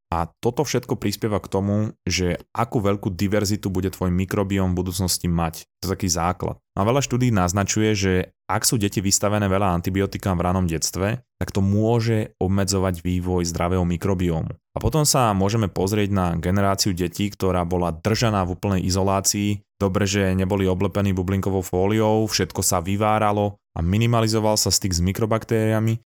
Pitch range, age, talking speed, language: 90-105 Hz, 20-39, 160 wpm, Slovak